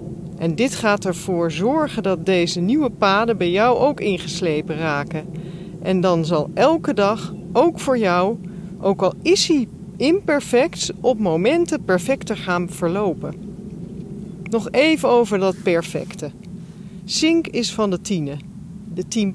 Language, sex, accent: Dutch, female, Dutch